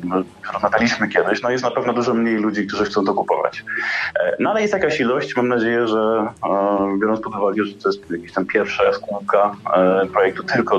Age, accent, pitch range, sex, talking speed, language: 20-39, native, 100-120 Hz, male, 190 wpm, Polish